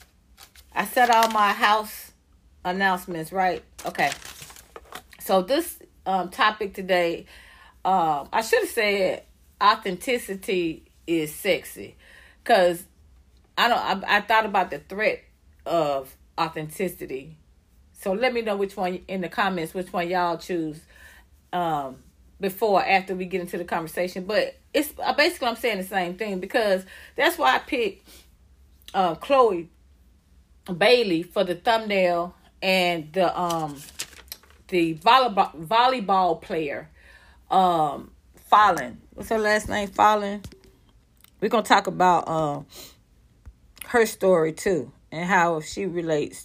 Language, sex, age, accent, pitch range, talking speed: English, female, 40-59, American, 160-205 Hz, 125 wpm